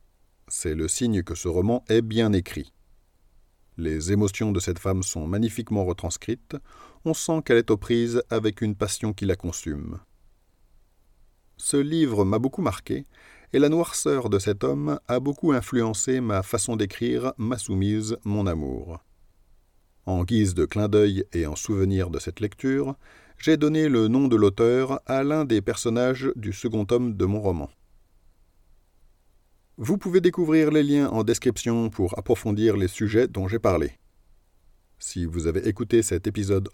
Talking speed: 160 wpm